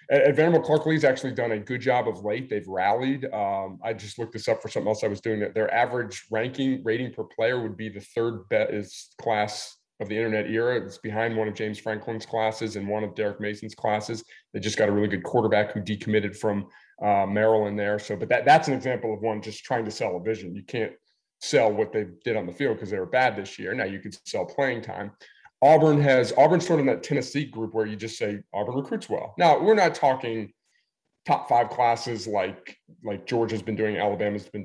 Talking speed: 225 wpm